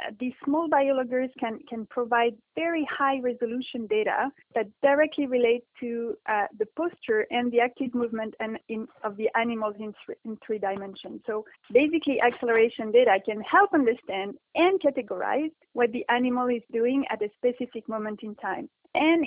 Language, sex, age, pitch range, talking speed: English, female, 30-49, 215-260 Hz, 160 wpm